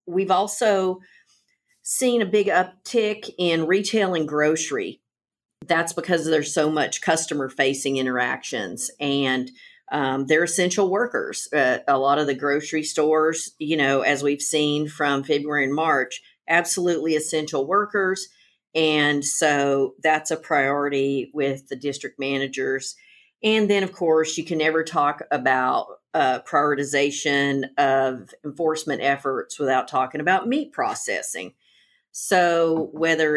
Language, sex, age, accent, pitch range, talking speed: English, female, 50-69, American, 145-175 Hz, 130 wpm